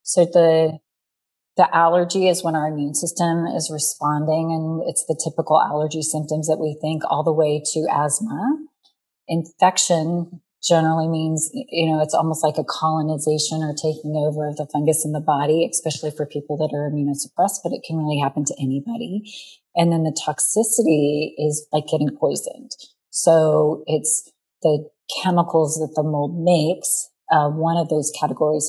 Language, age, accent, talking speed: English, 30-49, American, 165 wpm